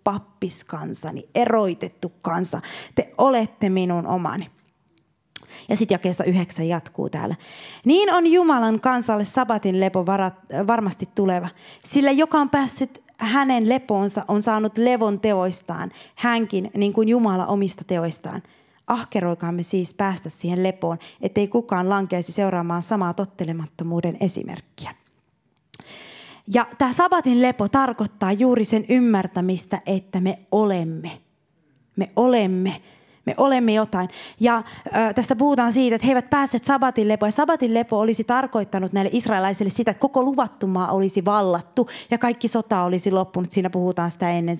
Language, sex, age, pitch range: Finnish, female, 20-39, 185-240 Hz